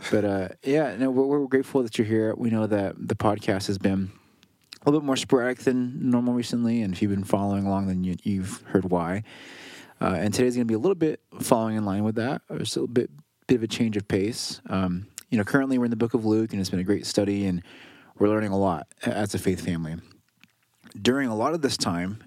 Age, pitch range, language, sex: 20-39, 95-115 Hz, English, male